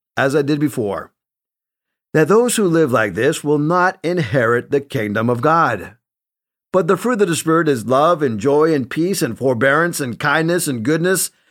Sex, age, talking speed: male, 50-69, 180 wpm